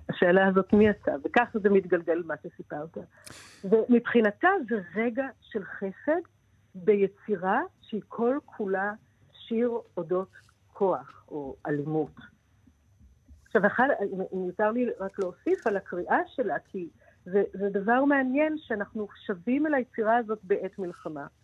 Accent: native